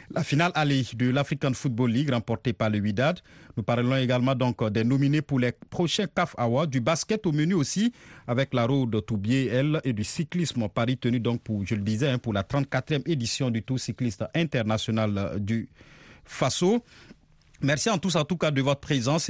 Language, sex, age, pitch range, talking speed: French, male, 50-69, 115-155 Hz, 190 wpm